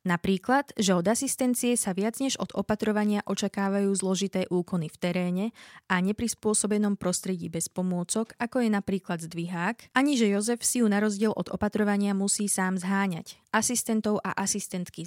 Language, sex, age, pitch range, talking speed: Slovak, female, 20-39, 180-215 Hz, 150 wpm